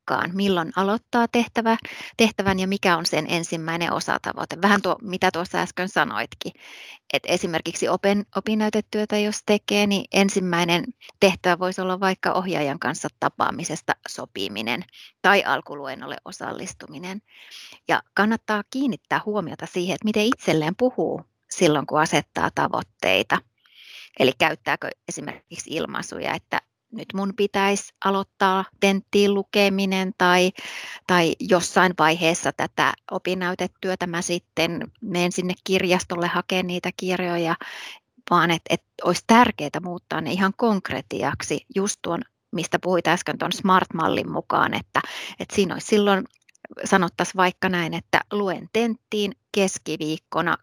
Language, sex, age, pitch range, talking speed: Finnish, female, 30-49, 175-200 Hz, 120 wpm